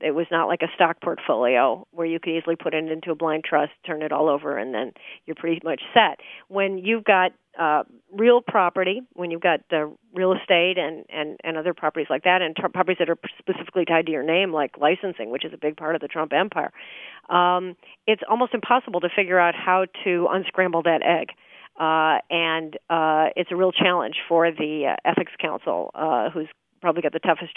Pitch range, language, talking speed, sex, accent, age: 160-185 Hz, English, 205 wpm, female, American, 40-59